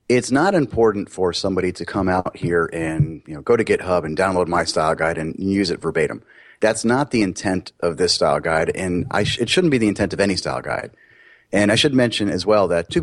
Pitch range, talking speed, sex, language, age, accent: 90-110 Hz, 240 wpm, male, English, 30-49, American